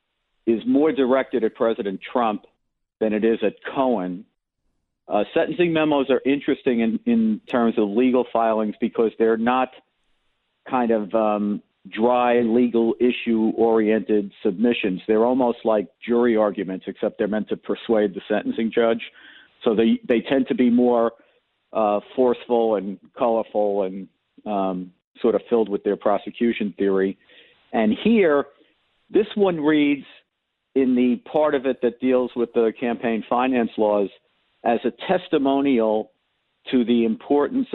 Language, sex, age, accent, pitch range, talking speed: English, male, 50-69, American, 110-125 Hz, 140 wpm